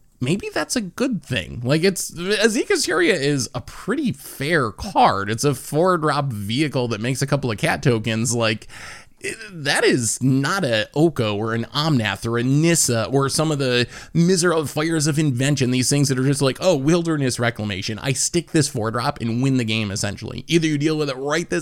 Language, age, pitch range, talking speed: English, 20-39, 115-145 Hz, 200 wpm